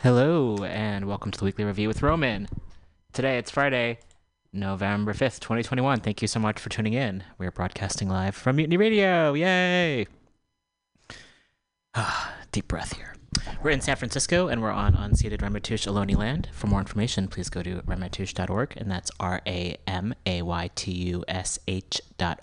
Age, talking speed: 30-49, 150 wpm